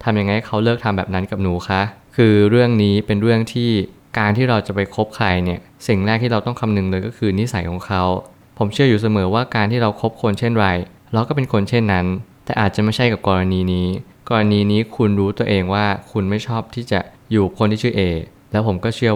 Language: Thai